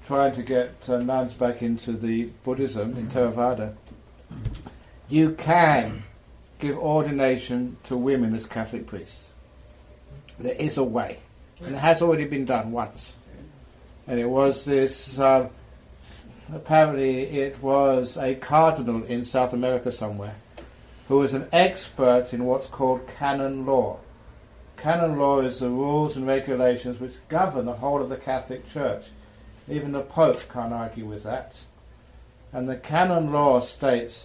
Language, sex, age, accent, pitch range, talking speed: English, male, 60-79, British, 115-135 Hz, 140 wpm